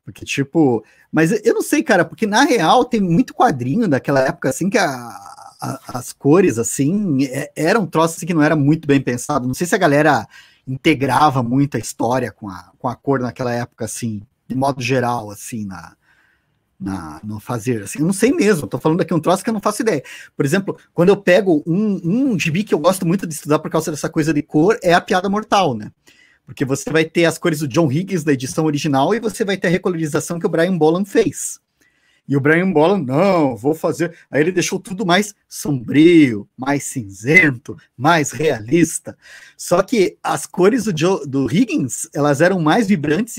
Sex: male